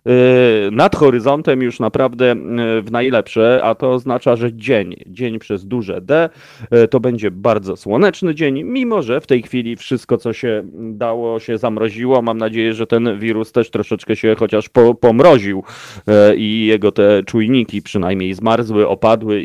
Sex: male